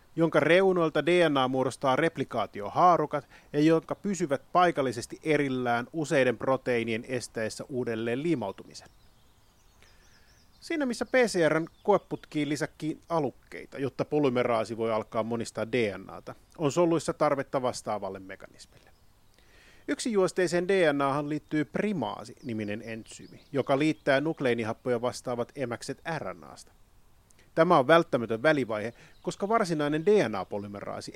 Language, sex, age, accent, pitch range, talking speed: Finnish, male, 30-49, native, 120-165 Hz, 100 wpm